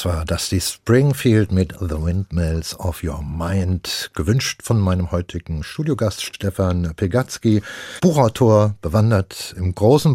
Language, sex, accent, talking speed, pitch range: German, male, German, 130 wpm, 100-125 Hz